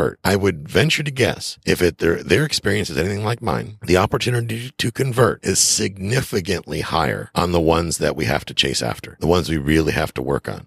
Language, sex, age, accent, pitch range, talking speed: English, male, 50-69, American, 70-100 Hz, 215 wpm